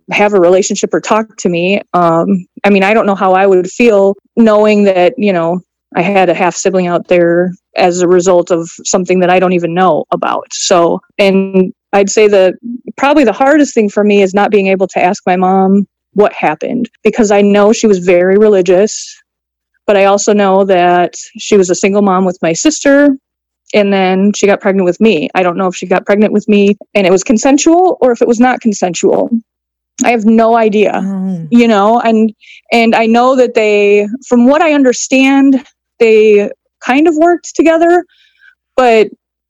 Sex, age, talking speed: female, 20-39, 195 wpm